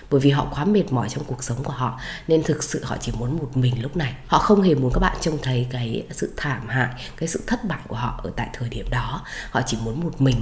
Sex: female